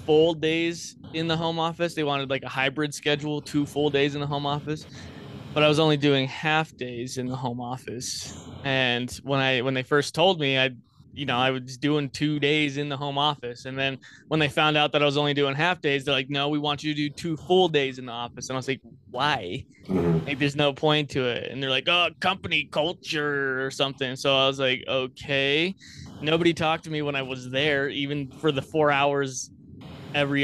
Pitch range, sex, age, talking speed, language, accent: 135-155 Hz, male, 20-39, 225 wpm, English, American